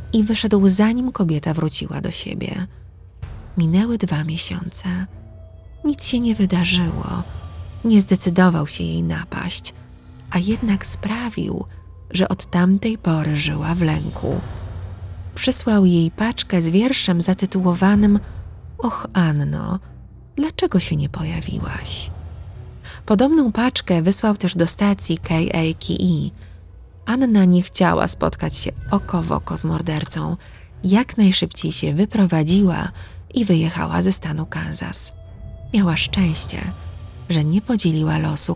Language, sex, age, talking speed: Polish, female, 30-49, 115 wpm